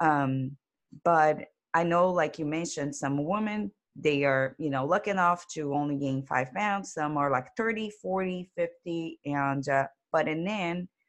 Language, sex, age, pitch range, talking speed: English, female, 30-49, 140-175 Hz, 170 wpm